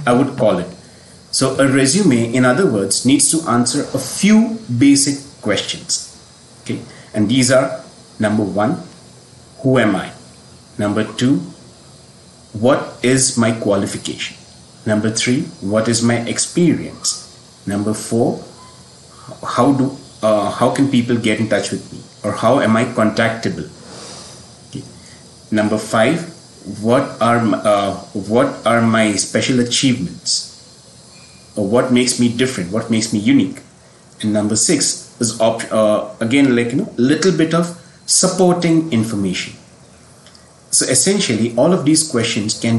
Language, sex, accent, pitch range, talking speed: English, male, Indian, 110-135 Hz, 135 wpm